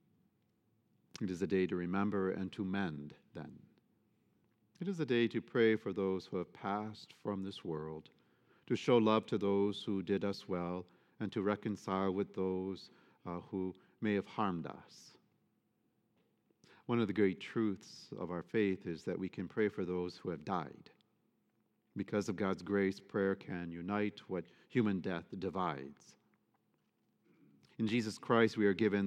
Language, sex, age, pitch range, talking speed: English, male, 50-69, 95-110 Hz, 165 wpm